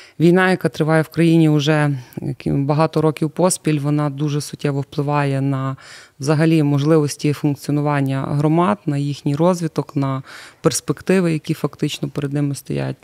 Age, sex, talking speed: 20-39, female, 130 wpm